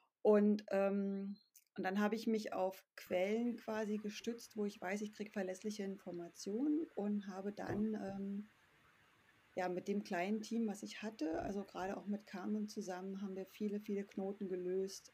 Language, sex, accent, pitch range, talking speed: German, female, German, 190-215 Hz, 165 wpm